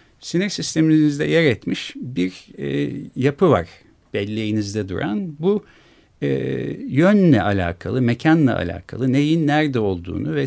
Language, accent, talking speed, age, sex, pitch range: Turkish, native, 115 wpm, 50-69, male, 100-150 Hz